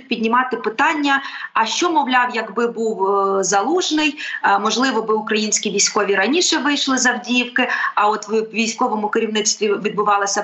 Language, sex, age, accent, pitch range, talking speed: Ukrainian, female, 20-39, native, 210-265 Hz, 125 wpm